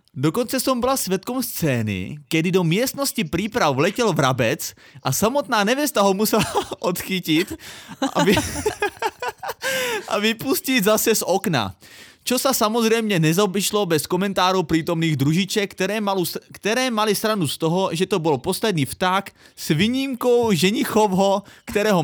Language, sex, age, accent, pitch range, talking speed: Czech, male, 20-39, native, 145-210 Hz, 130 wpm